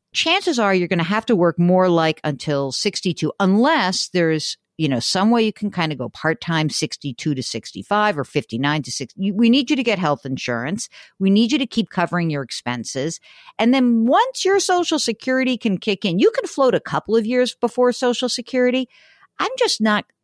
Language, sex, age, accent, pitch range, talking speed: English, female, 50-69, American, 165-240 Hz, 200 wpm